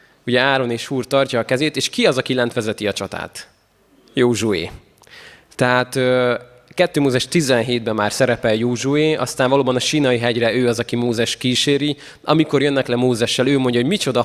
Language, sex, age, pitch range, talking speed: Hungarian, male, 20-39, 115-140 Hz, 175 wpm